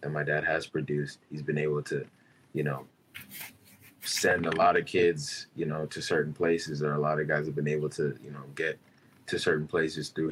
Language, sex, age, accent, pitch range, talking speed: English, male, 20-39, American, 75-85 Hz, 210 wpm